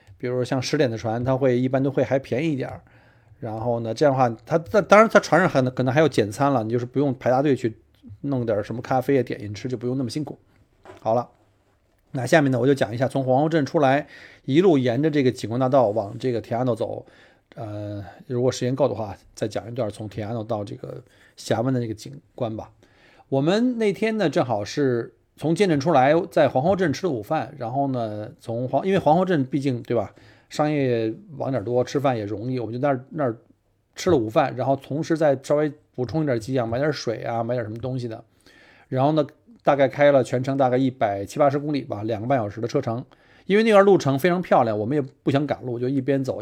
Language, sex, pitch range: Chinese, male, 115-145 Hz